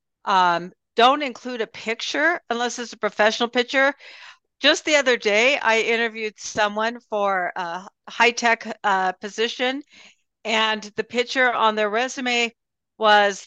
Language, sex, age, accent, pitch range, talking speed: English, female, 50-69, American, 200-245 Hz, 135 wpm